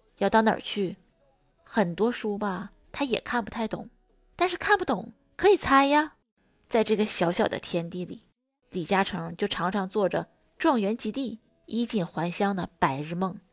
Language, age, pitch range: Chinese, 20-39, 175-230 Hz